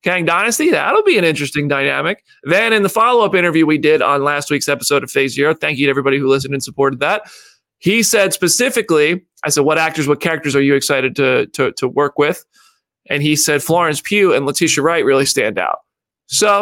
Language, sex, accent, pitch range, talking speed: English, male, American, 145-215 Hz, 215 wpm